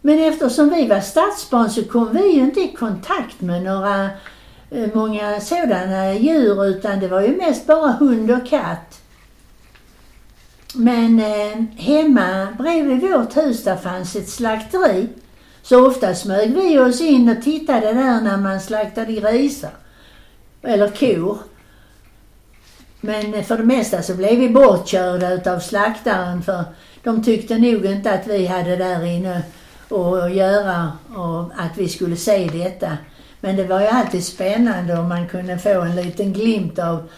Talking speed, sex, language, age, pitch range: 150 wpm, female, Swedish, 60-79, 185-250 Hz